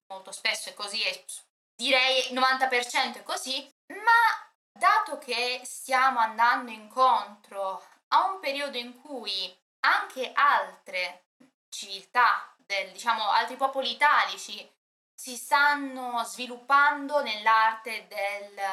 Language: Italian